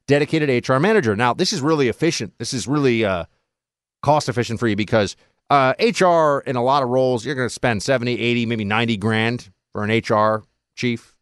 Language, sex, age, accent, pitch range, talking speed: English, male, 30-49, American, 110-140 Hz, 200 wpm